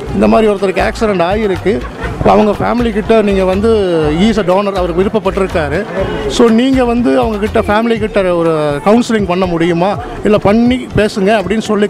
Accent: native